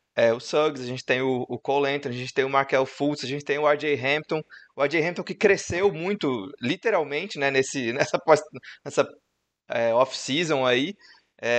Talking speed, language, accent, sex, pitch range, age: 185 wpm, Portuguese, Brazilian, male, 130-165 Hz, 20-39